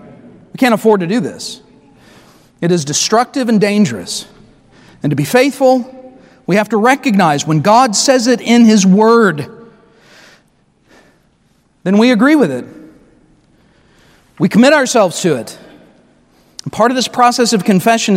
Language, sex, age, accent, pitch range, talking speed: English, male, 40-59, American, 205-275 Hz, 135 wpm